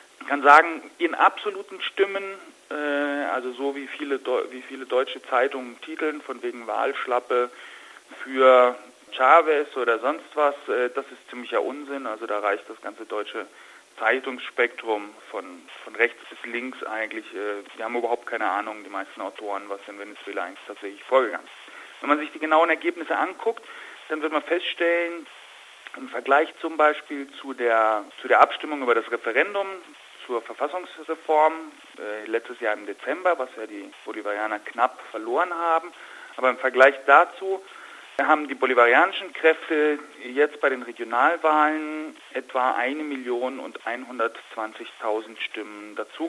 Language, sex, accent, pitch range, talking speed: German, male, German, 120-155 Hz, 145 wpm